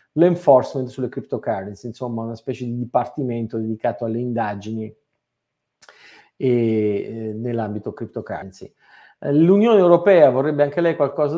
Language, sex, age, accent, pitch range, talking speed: Italian, male, 50-69, native, 115-150 Hz, 105 wpm